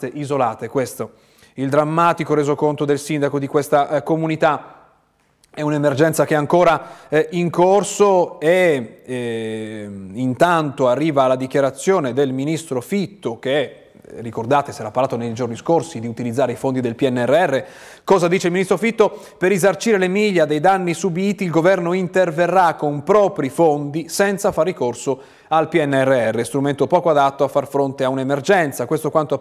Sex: male